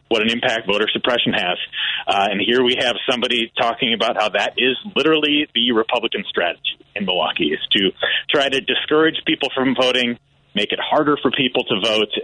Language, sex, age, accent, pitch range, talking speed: English, male, 30-49, American, 110-140 Hz, 185 wpm